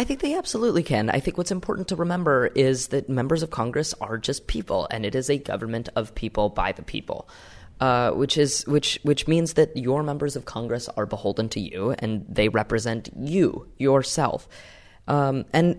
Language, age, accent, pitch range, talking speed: English, 20-39, American, 105-145 Hz, 195 wpm